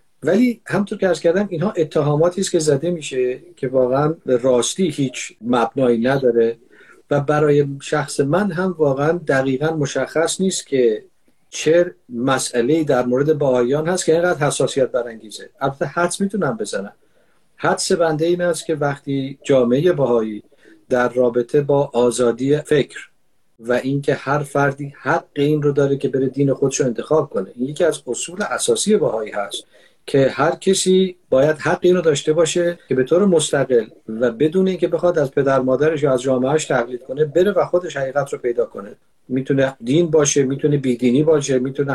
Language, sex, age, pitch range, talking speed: Persian, male, 50-69, 130-170 Hz, 160 wpm